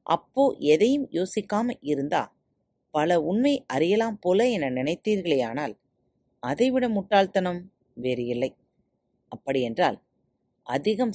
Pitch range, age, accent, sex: 155-245 Hz, 30-49, native, female